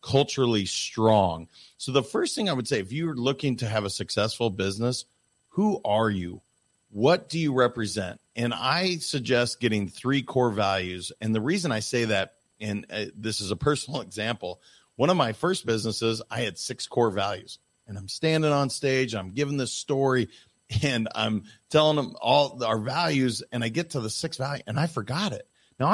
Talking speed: 185 wpm